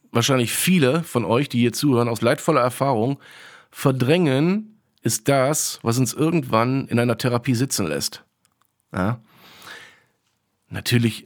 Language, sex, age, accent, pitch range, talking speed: German, male, 40-59, German, 120-180 Hz, 115 wpm